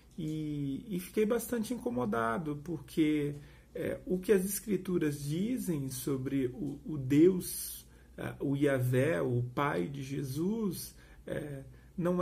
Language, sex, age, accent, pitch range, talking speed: Portuguese, male, 40-59, Brazilian, 140-185 Hz, 125 wpm